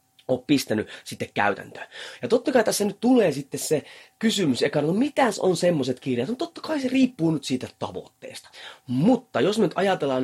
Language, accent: Finnish, native